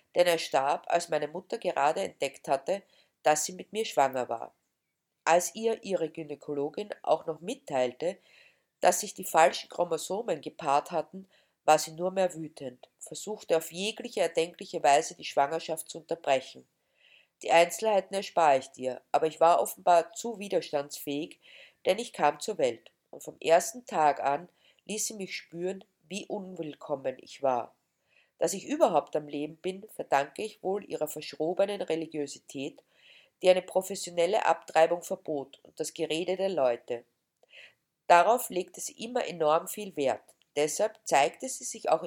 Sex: female